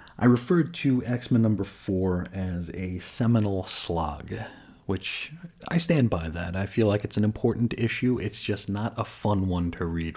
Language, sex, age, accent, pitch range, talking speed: English, male, 30-49, American, 90-115 Hz, 175 wpm